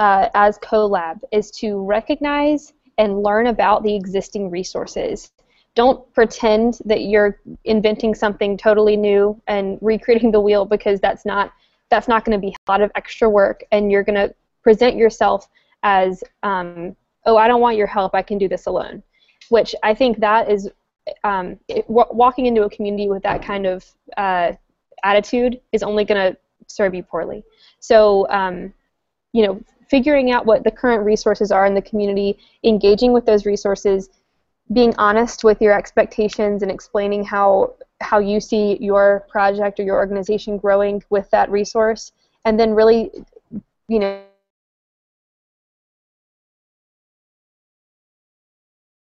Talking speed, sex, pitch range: 150 wpm, female, 200-225 Hz